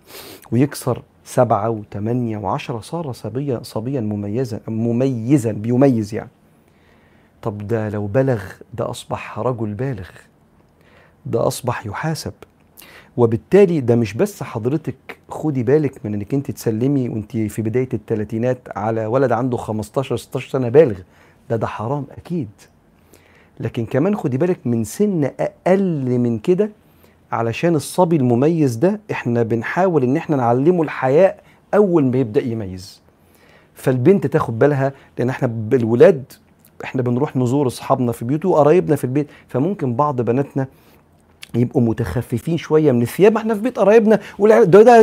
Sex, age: male, 40-59